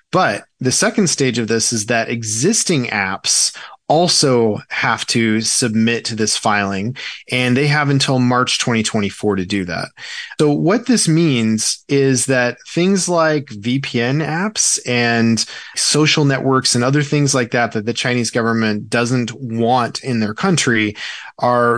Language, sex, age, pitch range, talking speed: English, male, 20-39, 115-150 Hz, 150 wpm